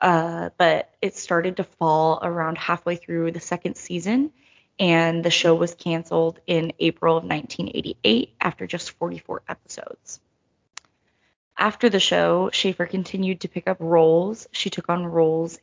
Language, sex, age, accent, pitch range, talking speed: English, female, 20-39, American, 170-235 Hz, 145 wpm